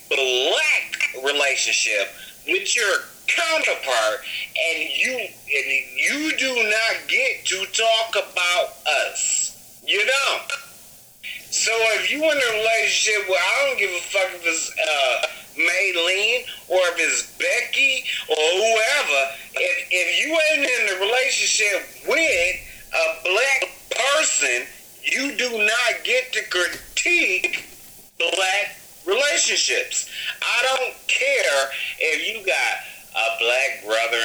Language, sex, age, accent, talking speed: English, male, 50-69, American, 120 wpm